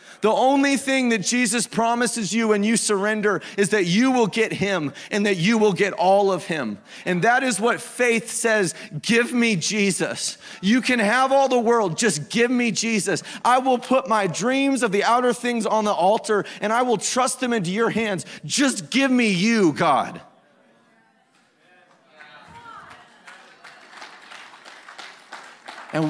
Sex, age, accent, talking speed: male, 30-49, American, 160 wpm